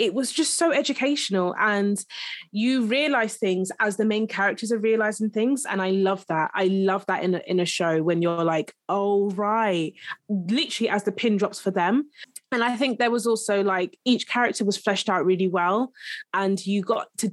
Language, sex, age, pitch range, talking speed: English, female, 20-39, 185-240 Hz, 200 wpm